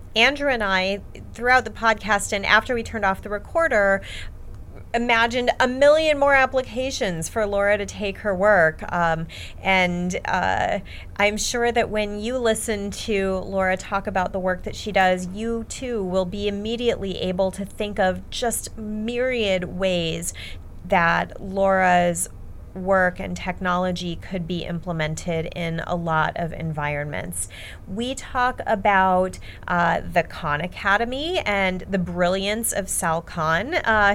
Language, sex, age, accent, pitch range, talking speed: English, female, 30-49, American, 165-210 Hz, 140 wpm